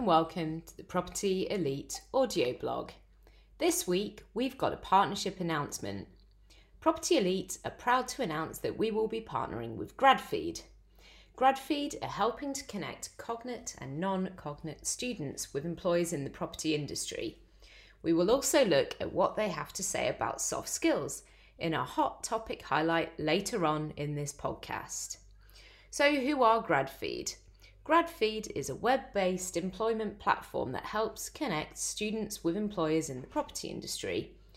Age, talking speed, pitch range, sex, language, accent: 30-49, 150 wpm, 160-235 Hz, female, English, British